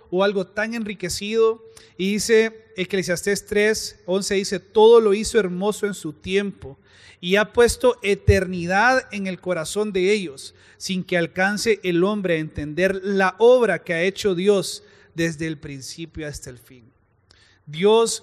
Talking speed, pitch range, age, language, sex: 150 wpm, 160-200 Hz, 30-49, Spanish, male